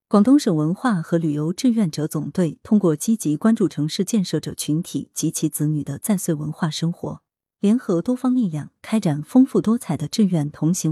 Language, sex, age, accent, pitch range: Chinese, female, 20-39, native, 155-225 Hz